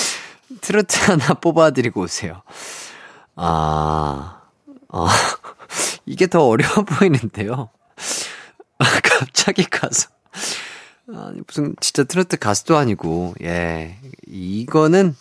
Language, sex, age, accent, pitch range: Korean, male, 30-49, native, 110-180 Hz